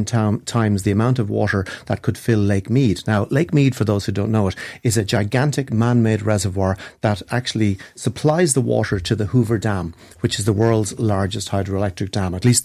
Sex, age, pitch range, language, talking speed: male, 40-59, 100-125 Hz, English, 200 wpm